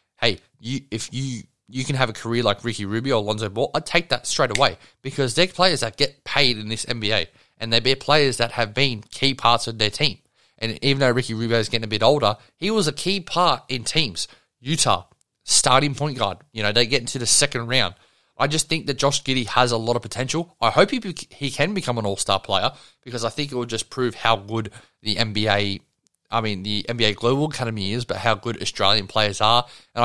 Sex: male